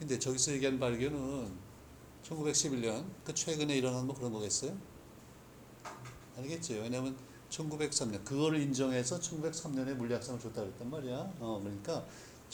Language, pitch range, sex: Korean, 120-145 Hz, male